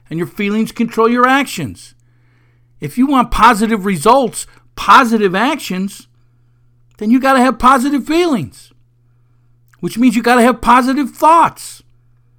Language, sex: English, male